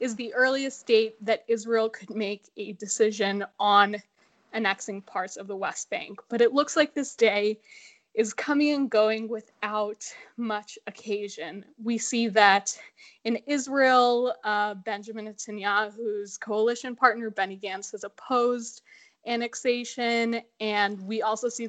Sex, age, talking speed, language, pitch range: female, 10-29, 135 wpm, English, 210-245 Hz